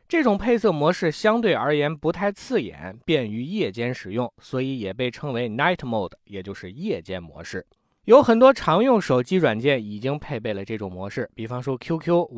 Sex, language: male, Chinese